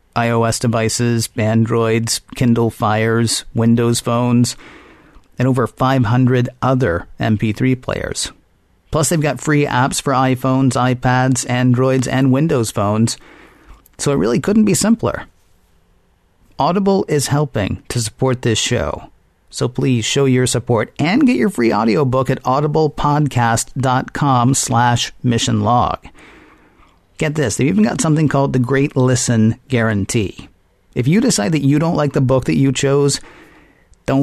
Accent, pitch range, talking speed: American, 115-135 Hz, 135 wpm